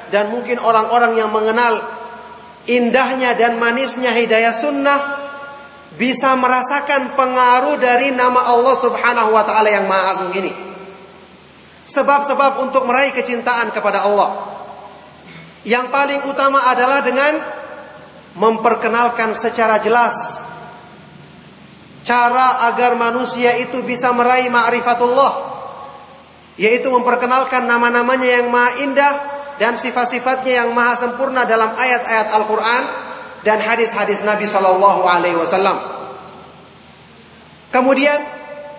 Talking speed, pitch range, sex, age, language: 100 wpm, 225-265 Hz, male, 30-49, Indonesian